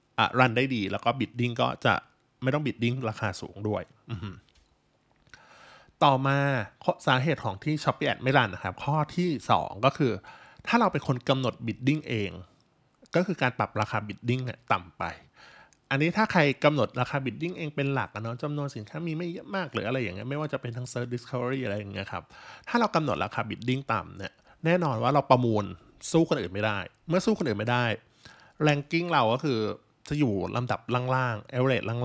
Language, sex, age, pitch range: Thai, male, 20-39, 110-145 Hz